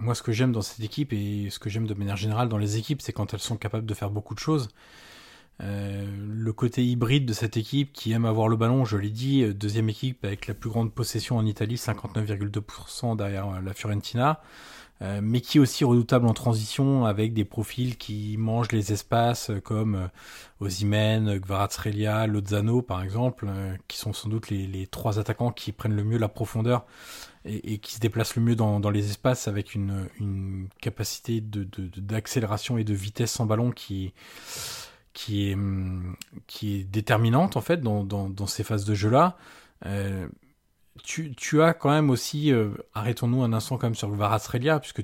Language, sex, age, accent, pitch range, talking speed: French, male, 20-39, French, 105-125 Hz, 195 wpm